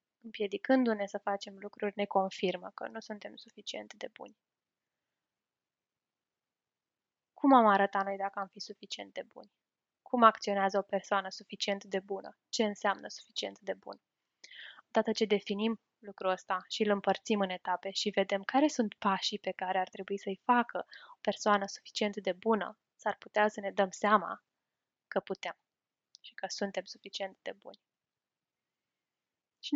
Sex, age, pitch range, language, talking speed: female, 10-29, 195-235 Hz, Romanian, 150 wpm